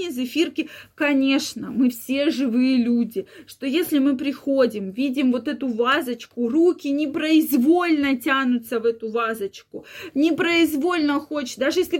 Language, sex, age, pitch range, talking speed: Russian, female, 20-39, 230-300 Hz, 120 wpm